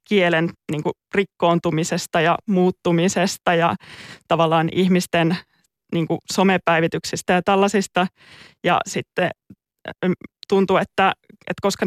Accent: native